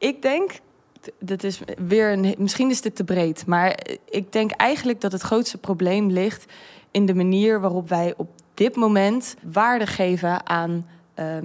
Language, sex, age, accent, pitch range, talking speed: Dutch, female, 20-39, Dutch, 190-230 Hz, 145 wpm